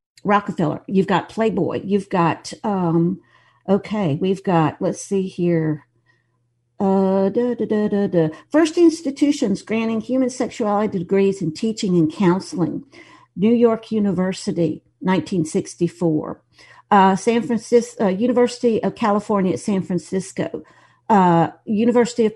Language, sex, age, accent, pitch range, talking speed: English, female, 50-69, American, 175-215 Hz, 110 wpm